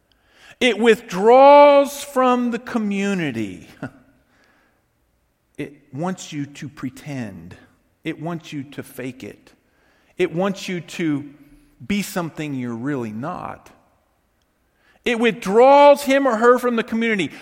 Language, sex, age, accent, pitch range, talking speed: English, male, 50-69, American, 130-210 Hz, 115 wpm